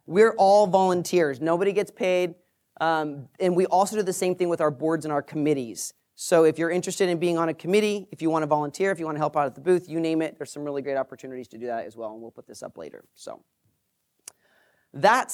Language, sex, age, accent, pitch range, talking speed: English, male, 30-49, American, 155-200 Hz, 250 wpm